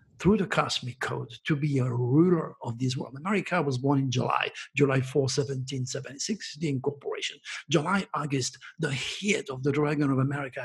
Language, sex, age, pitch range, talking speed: English, male, 60-79, 140-170 Hz, 170 wpm